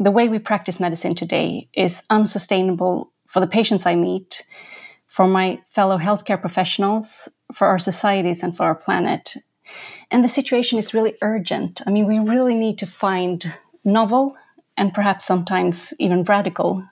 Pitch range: 190-230 Hz